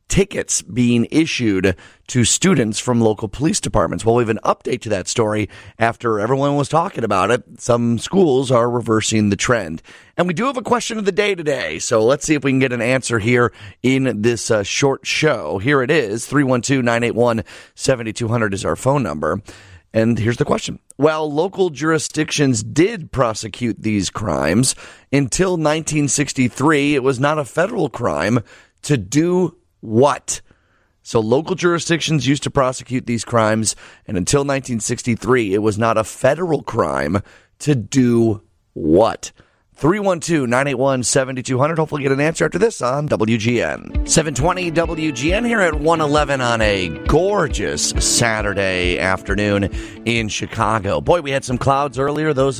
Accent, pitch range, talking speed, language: American, 110-150 Hz, 155 wpm, English